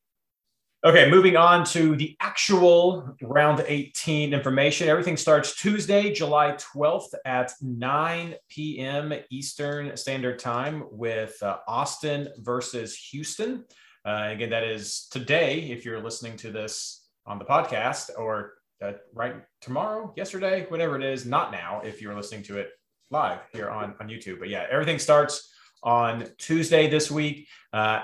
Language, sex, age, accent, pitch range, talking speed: English, male, 30-49, American, 115-145 Hz, 145 wpm